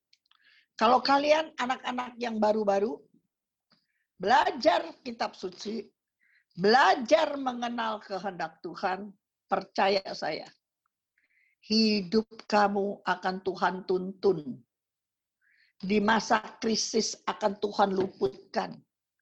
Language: Indonesian